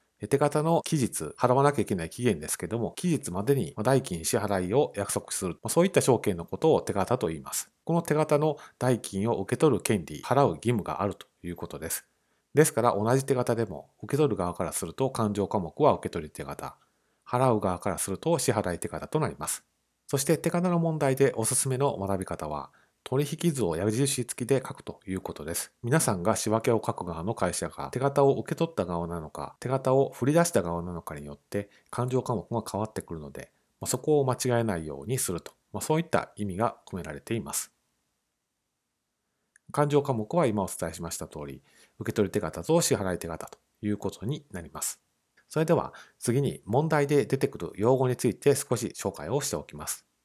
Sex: male